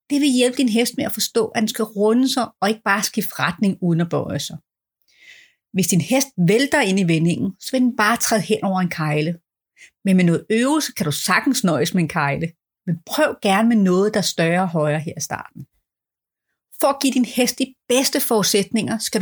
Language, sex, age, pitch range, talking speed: Danish, female, 30-49, 180-250 Hz, 220 wpm